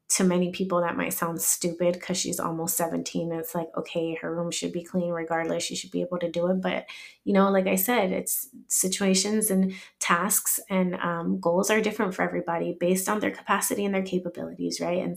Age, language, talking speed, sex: 20-39, English, 210 wpm, female